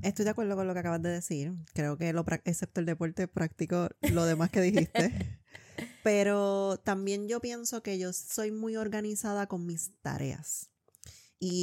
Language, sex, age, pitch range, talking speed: Spanish, female, 20-39, 165-200 Hz, 170 wpm